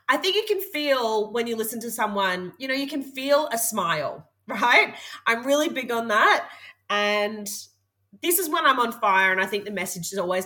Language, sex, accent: English, female, Australian